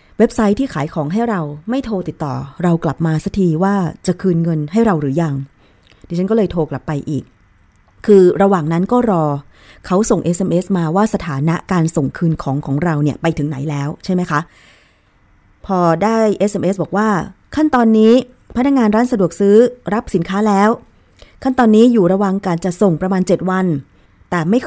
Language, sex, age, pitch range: Thai, female, 20-39, 160-210 Hz